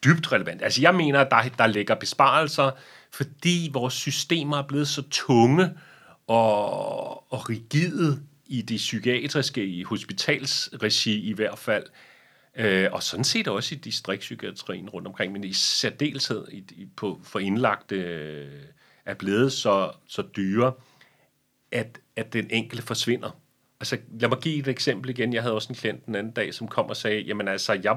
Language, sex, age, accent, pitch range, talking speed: Danish, male, 40-59, native, 115-155 Hz, 165 wpm